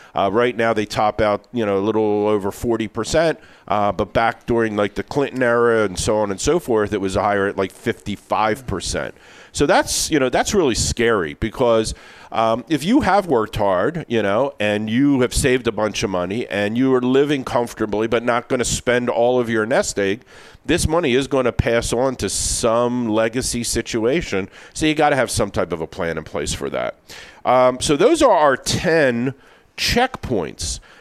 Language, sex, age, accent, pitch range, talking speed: English, male, 50-69, American, 105-130 Hz, 200 wpm